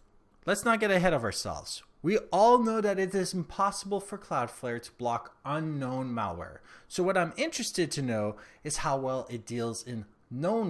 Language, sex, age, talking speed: English, male, 30-49, 180 wpm